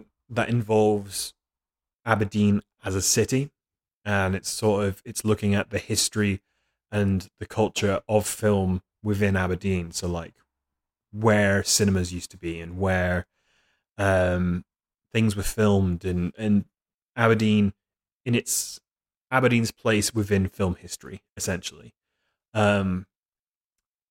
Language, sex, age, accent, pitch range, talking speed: English, male, 20-39, British, 95-110 Hz, 115 wpm